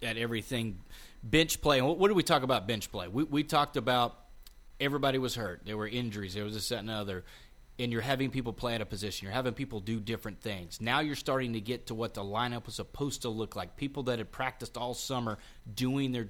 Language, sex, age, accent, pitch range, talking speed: English, male, 30-49, American, 115-135 Hz, 230 wpm